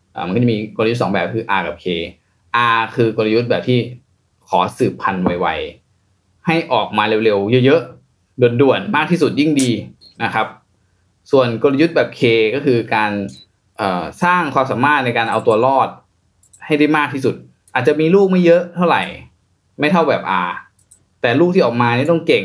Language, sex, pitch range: Thai, male, 100-140 Hz